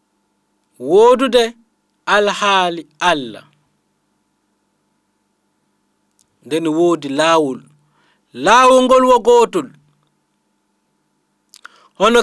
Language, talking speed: English, 50 wpm